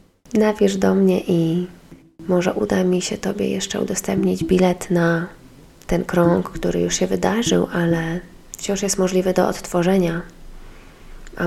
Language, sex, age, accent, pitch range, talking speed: Polish, female, 20-39, native, 180-210 Hz, 135 wpm